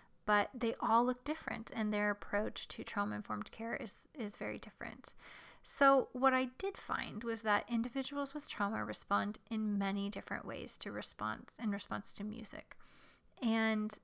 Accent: American